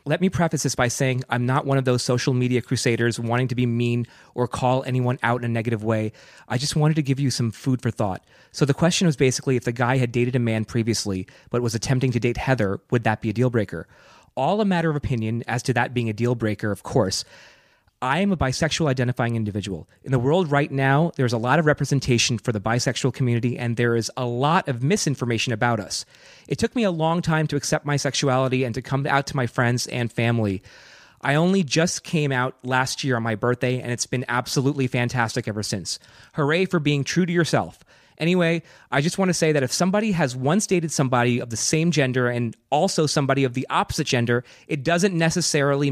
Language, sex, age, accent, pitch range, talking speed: English, male, 30-49, American, 120-150 Hz, 225 wpm